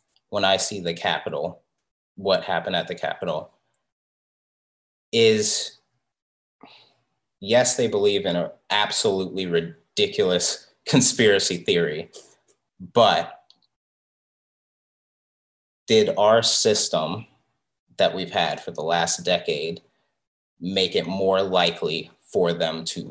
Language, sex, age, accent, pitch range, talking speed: English, male, 30-49, American, 90-115 Hz, 100 wpm